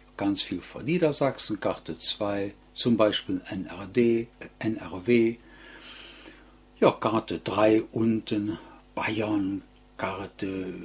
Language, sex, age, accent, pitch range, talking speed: German, male, 60-79, German, 105-130 Hz, 85 wpm